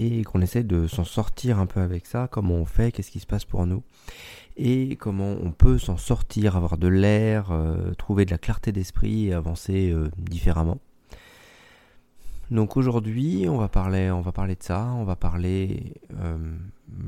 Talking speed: 185 wpm